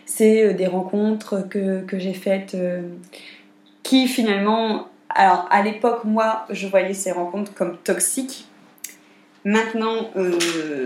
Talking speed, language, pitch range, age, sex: 120 wpm, French, 185-225 Hz, 20-39, female